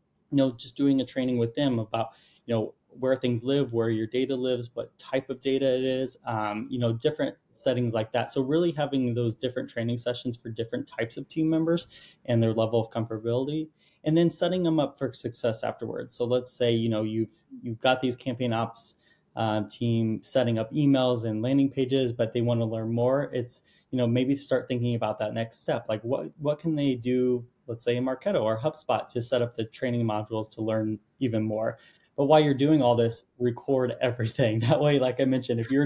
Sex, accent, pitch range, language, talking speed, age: male, American, 115-135 Hz, English, 215 wpm, 20-39